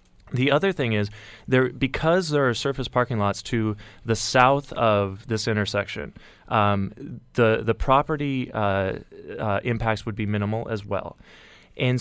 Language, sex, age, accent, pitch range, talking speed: English, male, 30-49, American, 110-140 Hz, 150 wpm